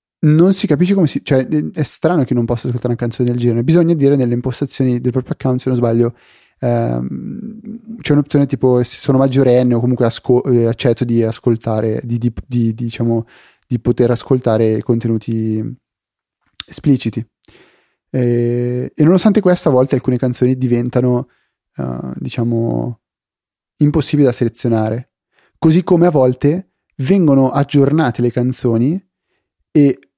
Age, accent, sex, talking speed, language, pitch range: 30-49, native, male, 145 wpm, Italian, 120-155 Hz